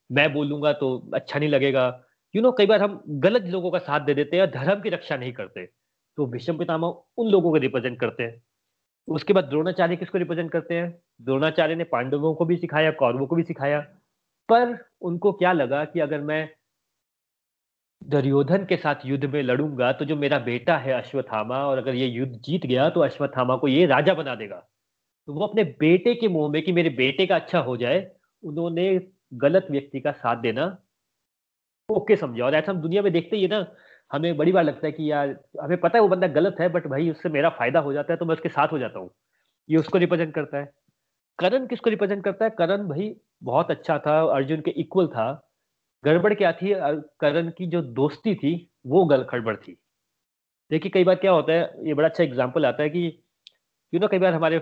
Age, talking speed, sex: 30-49, 160 wpm, male